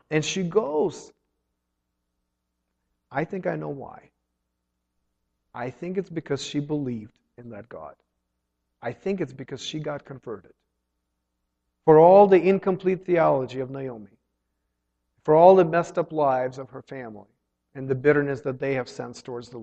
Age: 40-59